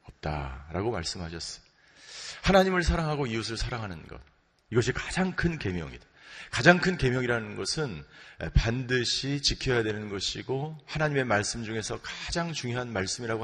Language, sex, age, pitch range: Korean, male, 40-59, 110-165 Hz